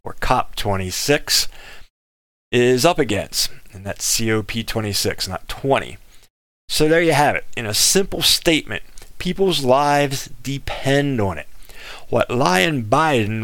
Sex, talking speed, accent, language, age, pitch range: male, 120 wpm, American, English, 40-59, 105-150 Hz